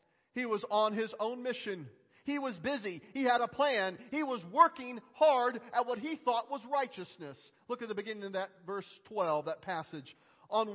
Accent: American